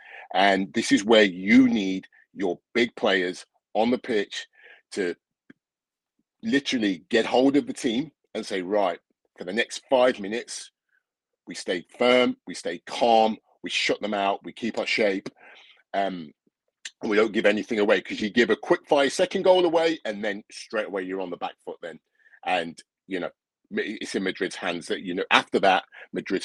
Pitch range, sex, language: 95-125 Hz, male, English